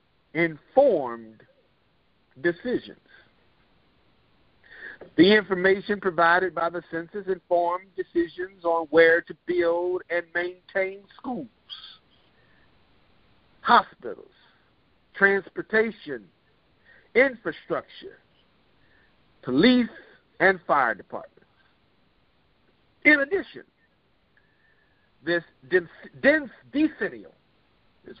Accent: American